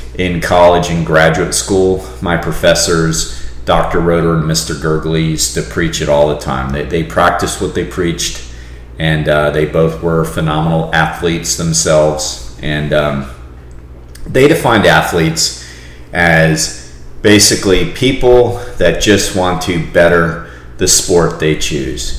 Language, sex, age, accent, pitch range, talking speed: English, male, 40-59, American, 70-85 Hz, 135 wpm